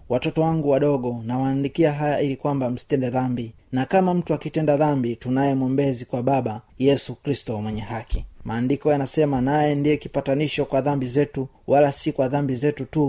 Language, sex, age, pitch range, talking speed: Swahili, male, 30-49, 125-145 Hz, 165 wpm